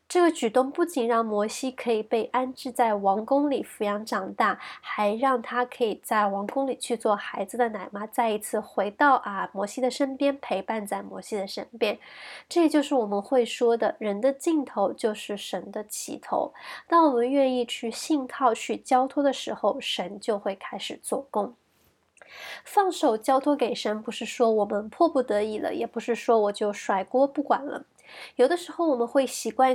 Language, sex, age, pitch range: Chinese, female, 20-39, 210-270 Hz